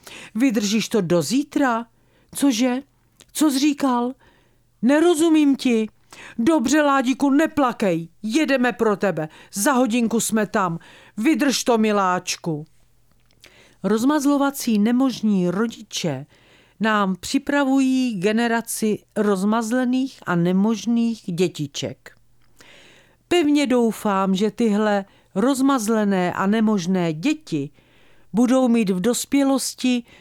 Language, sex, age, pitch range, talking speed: Czech, female, 50-69, 170-245 Hz, 90 wpm